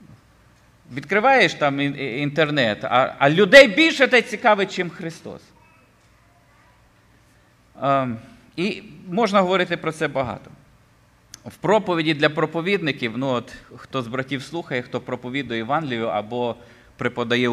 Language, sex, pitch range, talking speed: Ukrainian, male, 120-170 Hz, 105 wpm